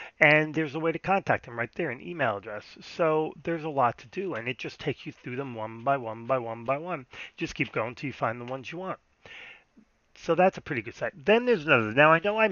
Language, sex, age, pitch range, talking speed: English, male, 30-49, 125-165 Hz, 265 wpm